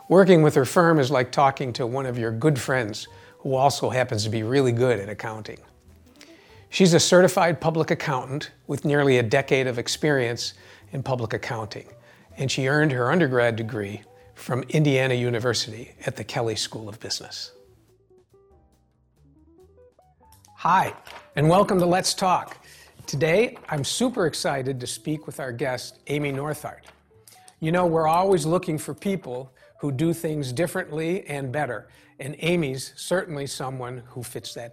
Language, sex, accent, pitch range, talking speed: English, male, American, 120-160 Hz, 150 wpm